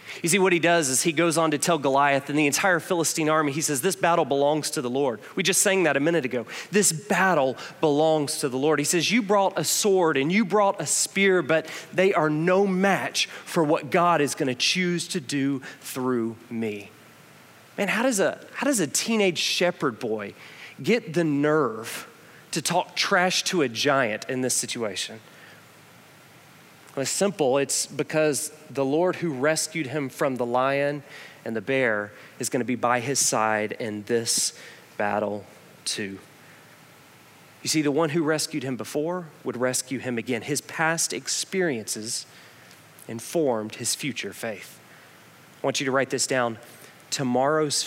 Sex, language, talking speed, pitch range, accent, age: male, English, 170 wpm, 125-170 Hz, American, 30-49